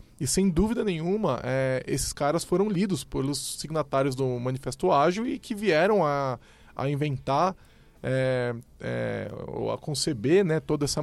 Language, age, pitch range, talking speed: Portuguese, 20-39, 130-160 Hz, 150 wpm